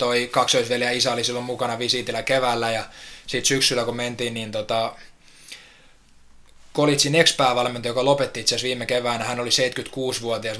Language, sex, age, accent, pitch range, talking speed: Finnish, male, 20-39, native, 110-125 Hz, 140 wpm